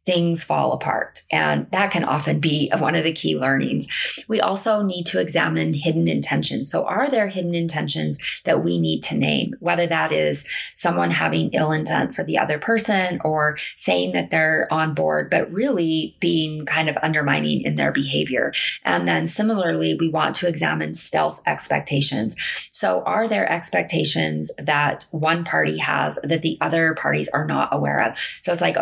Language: English